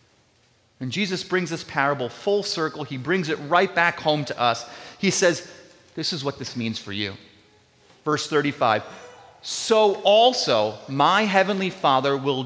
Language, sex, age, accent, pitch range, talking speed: English, male, 30-49, American, 130-215 Hz, 155 wpm